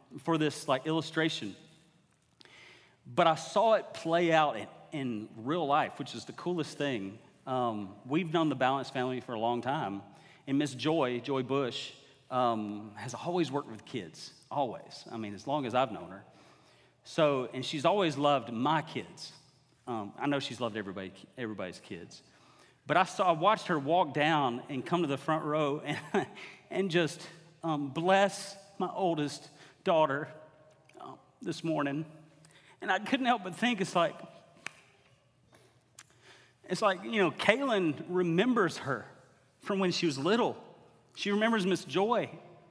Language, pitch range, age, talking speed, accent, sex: English, 135-180 Hz, 40-59, 155 wpm, American, male